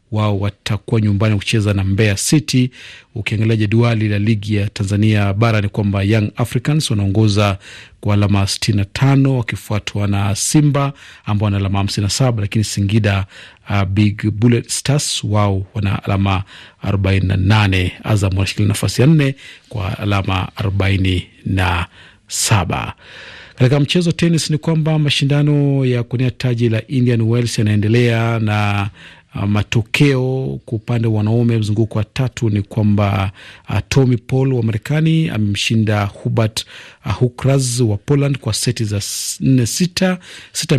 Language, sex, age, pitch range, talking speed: Swahili, male, 40-59, 100-125 Hz, 130 wpm